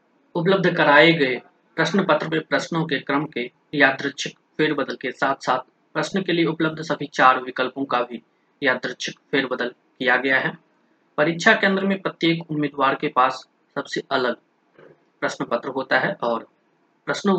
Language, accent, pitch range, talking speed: Hindi, native, 130-160 Hz, 150 wpm